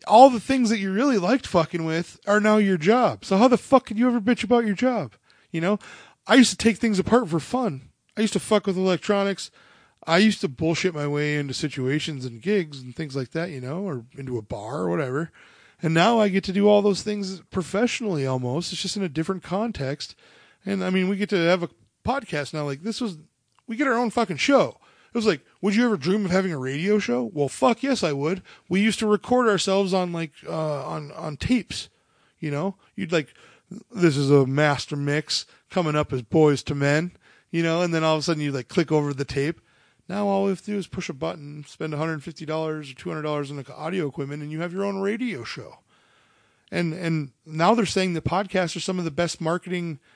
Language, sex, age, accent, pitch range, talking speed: English, male, 20-39, American, 150-205 Hz, 230 wpm